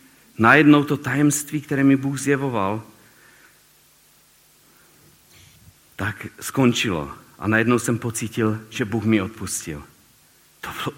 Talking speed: 105 wpm